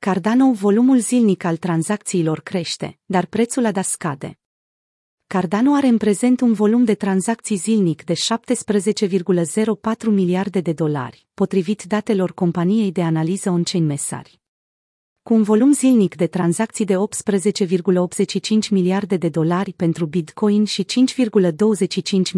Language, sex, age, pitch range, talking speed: Romanian, female, 30-49, 175-220 Hz, 125 wpm